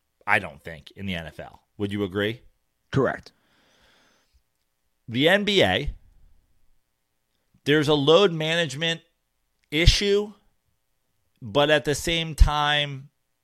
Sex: male